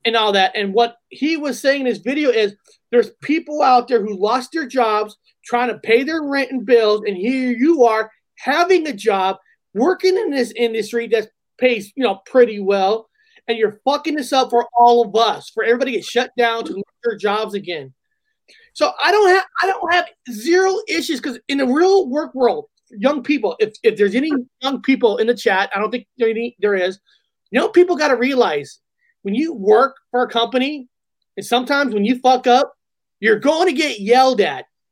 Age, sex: 30-49, male